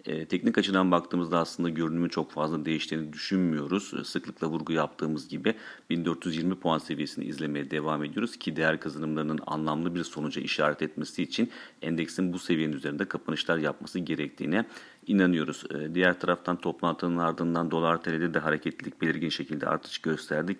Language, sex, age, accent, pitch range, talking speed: Turkish, male, 40-59, native, 80-85 Hz, 140 wpm